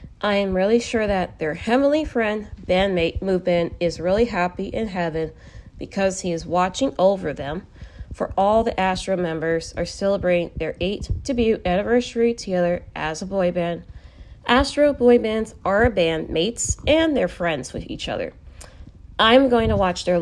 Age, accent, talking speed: 30-49, American, 155 wpm